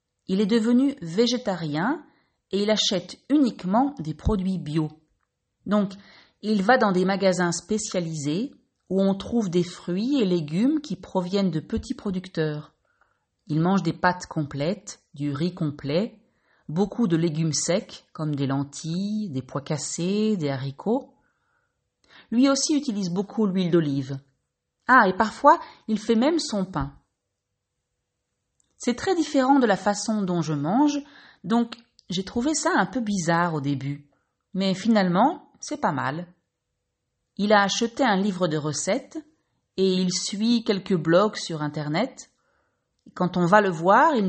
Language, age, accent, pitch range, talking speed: French, 40-59, French, 165-235 Hz, 145 wpm